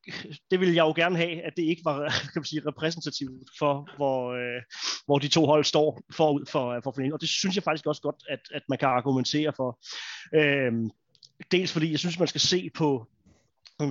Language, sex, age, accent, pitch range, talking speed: Danish, male, 30-49, native, 130-155 Hz, 225 wpm